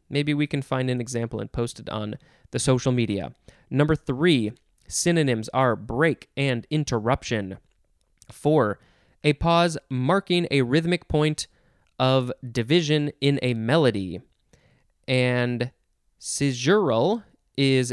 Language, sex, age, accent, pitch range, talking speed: English, male, 20-39, American, 120-150 Hz, 115 wpm